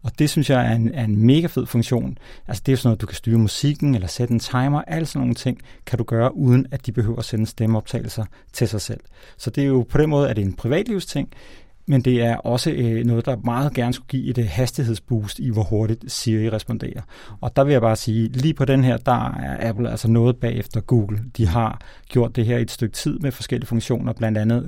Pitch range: 115-135 Hz